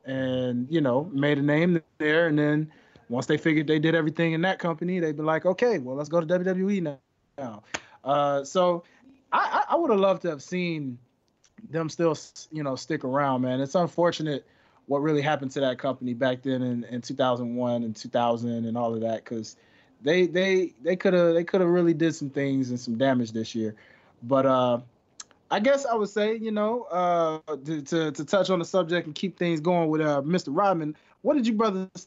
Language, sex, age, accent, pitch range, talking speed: English, male, 20-39, American, 140-190 Hz, 205 wpm